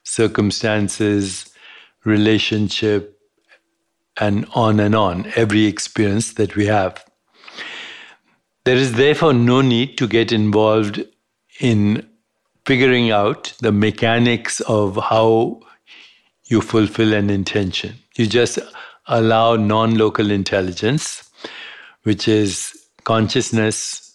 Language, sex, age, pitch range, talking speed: English, male, 60-79, 105-120 Hz, 95 wpm